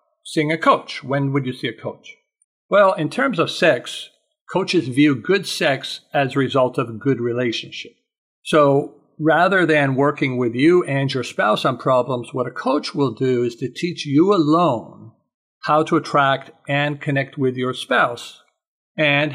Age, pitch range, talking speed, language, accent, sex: 50-69, 125-150 Hz, 170 wpm, English, American, male